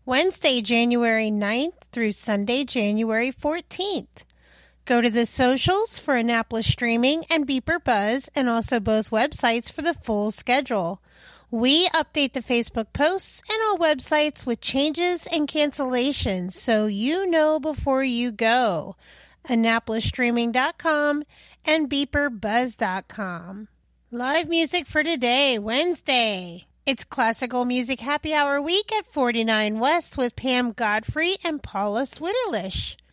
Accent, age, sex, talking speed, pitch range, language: American, 40-59, female, 120 wpm, 230-315 Hz, English